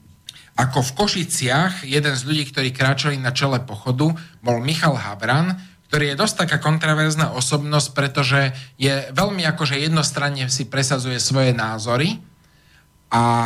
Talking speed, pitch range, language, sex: 135 wpm, 130-160 Hz, Slovak, male